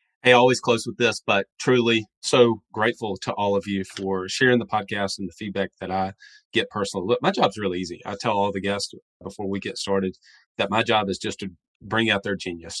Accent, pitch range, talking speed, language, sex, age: American, 95-110 Hz, 230 wpm, English, male, 30-49